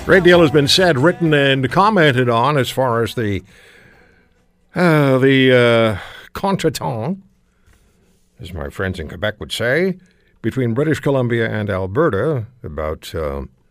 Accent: American